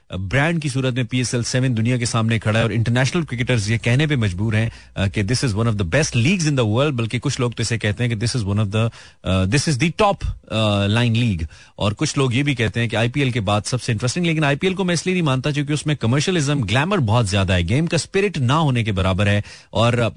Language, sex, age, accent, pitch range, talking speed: Hindi, male, 30-49, native, 110-145 Hz, 250 wpm